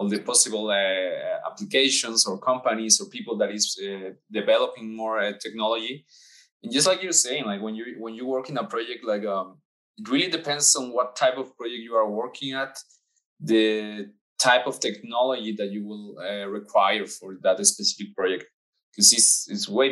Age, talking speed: 20-39, 185 wpm